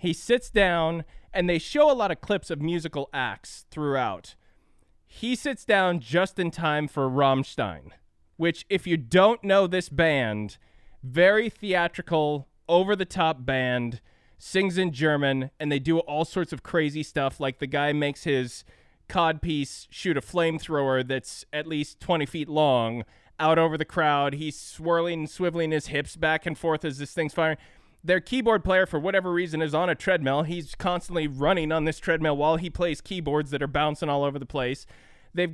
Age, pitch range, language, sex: 20-39, 150-195 Hz, English, male